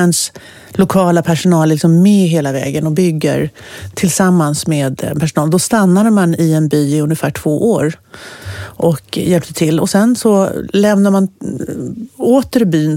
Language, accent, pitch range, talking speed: English, Swedish, 155-190 Hz, 135 wpm